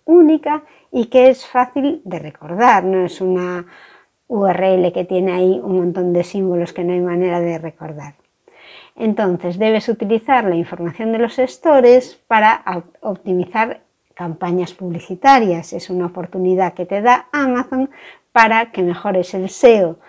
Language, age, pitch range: Spanish, 60-79, 180-250 Hz